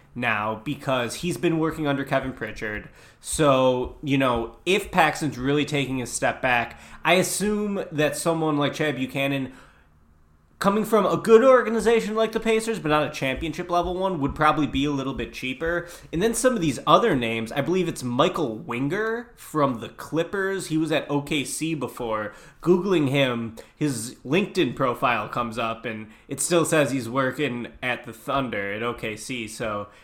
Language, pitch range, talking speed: English, 120-160 Hz, 170 wpm